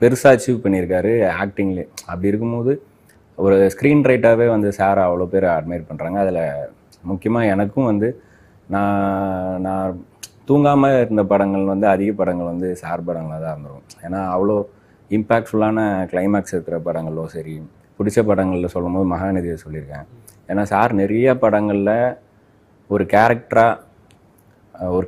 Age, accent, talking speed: 30-49, native, 120 wpm